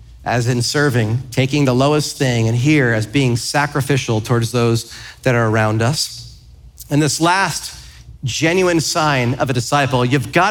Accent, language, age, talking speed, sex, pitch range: American, English, 40-59, 160 wpm, male, 120-175 Hz